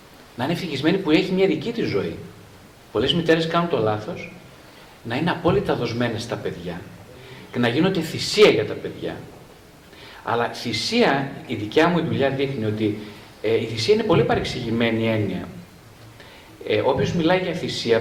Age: 40-59